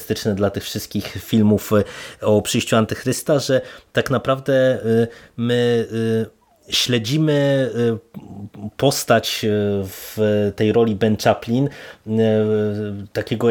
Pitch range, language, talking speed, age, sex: 105-120 Hz, Polish, 85 wpm, 20-39, male